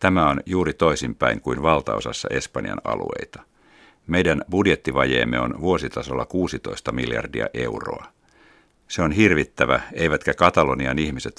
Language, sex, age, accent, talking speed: Finnish, male, 60-79, native, 110 wpm